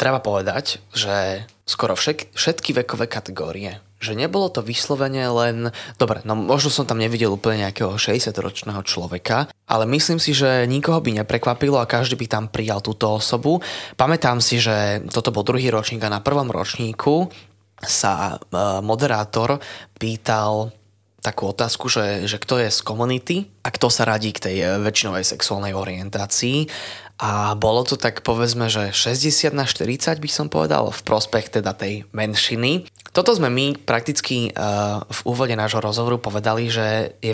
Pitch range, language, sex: 105-125 Hz, Slovak, male